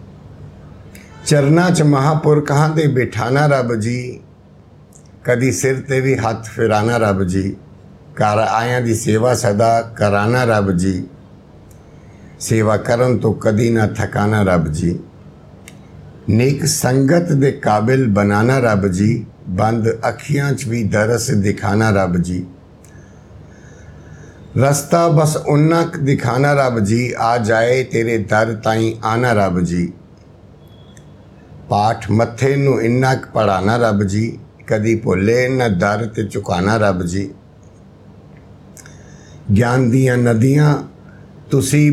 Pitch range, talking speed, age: 100-125 Hz, 105 wpm, 60-79